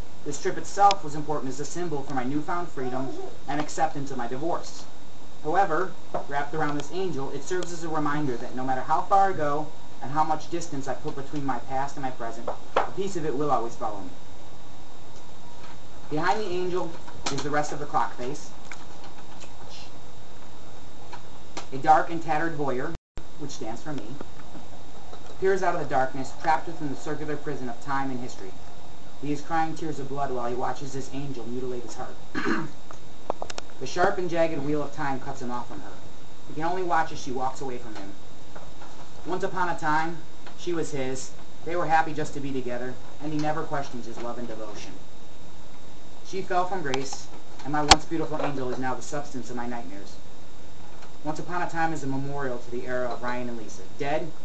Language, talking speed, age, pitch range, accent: English, 195 wpm, 30-49, 125-155 Hz, American